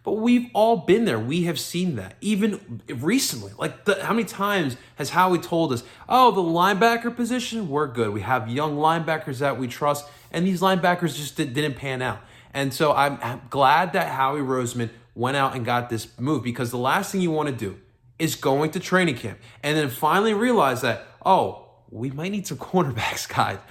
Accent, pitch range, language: American, 115-160 Hz, English